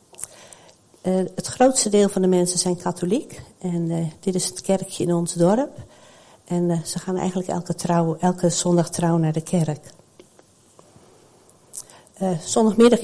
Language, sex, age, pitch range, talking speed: Dutch, female, 60-79, 170-195 Hz, 145 wpm